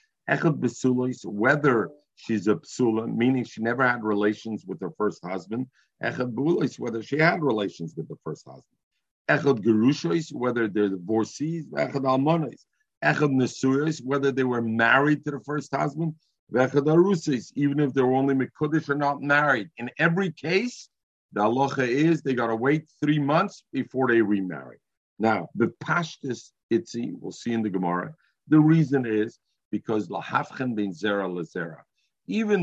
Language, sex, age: English, male, 50-69